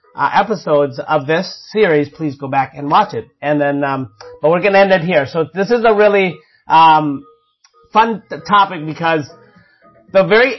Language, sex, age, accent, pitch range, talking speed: English, male, 30-49, American, 150-195 Hz, 185 wpm